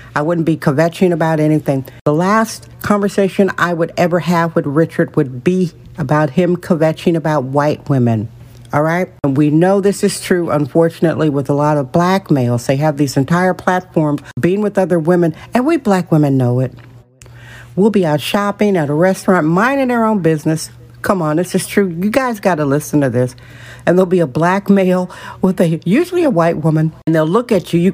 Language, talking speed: English, 200 wpm